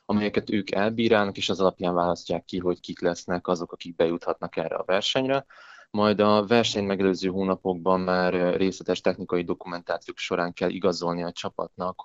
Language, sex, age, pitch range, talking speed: Hungarian, male, 20-39, 90-100 Hz, 155 wpm